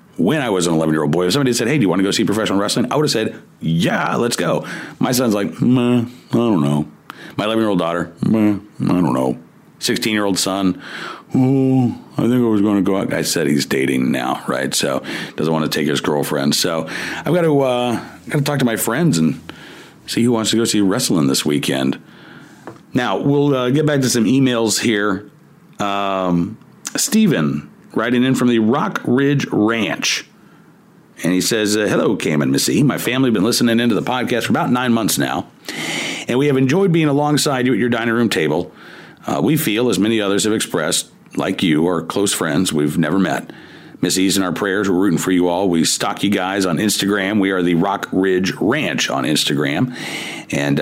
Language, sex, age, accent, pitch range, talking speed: English, male, 40-59, American, 85-125 Hz, 210 wpm